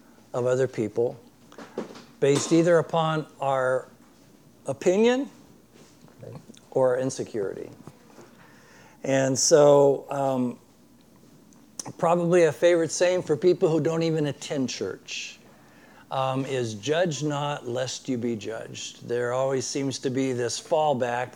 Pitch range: 130-165 Hz